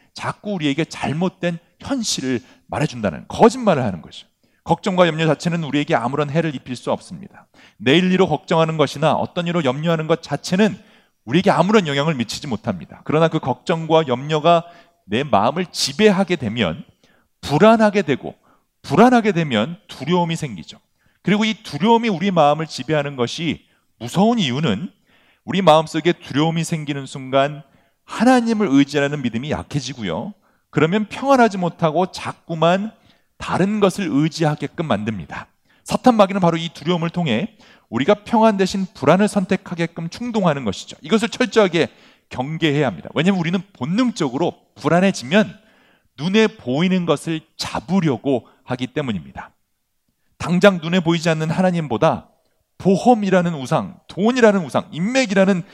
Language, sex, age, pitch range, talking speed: English, male, 40-59, 150-205 Hz, 115 wpm